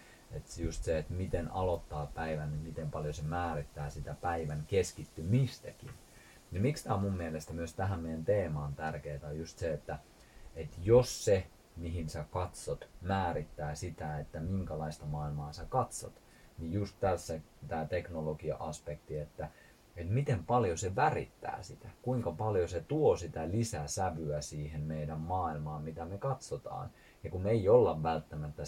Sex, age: male, 30-49